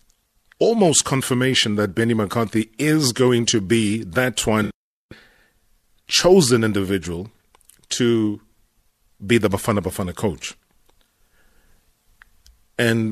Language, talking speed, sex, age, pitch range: English, 90 wpm, male, 40-59, 95-115 Hz